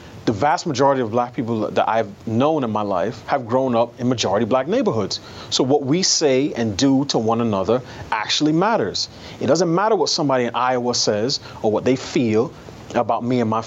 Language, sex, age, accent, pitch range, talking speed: English, male, 30-49, American, 115-145 Hz, 200 wpm